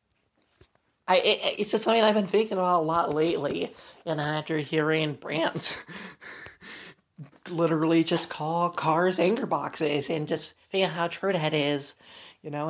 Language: English